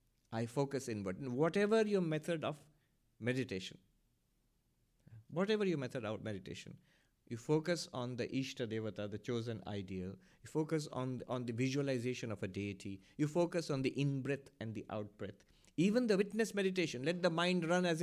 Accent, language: Indian, English